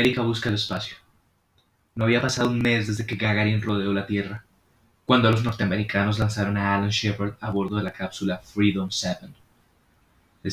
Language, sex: Spanish, male